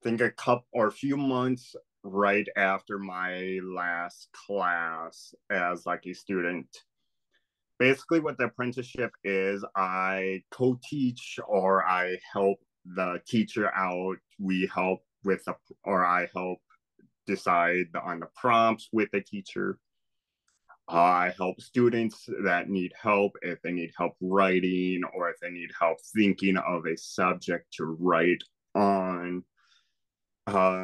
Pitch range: 90-100 Hz